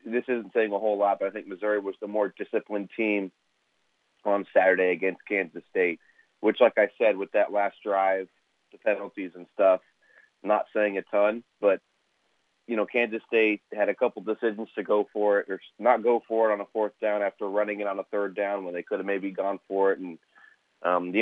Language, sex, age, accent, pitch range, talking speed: English, male, 30-49, American, 95-110 Hz, 215 wpm